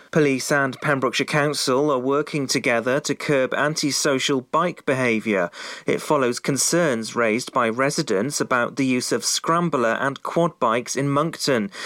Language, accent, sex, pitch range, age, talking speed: English, British, male, 125-150 Hz, 30-49, 140 wpm